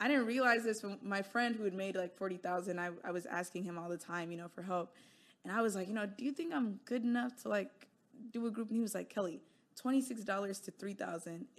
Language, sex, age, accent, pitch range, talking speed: English, female, 20-39, American, 175-210 Hz, 255 wpm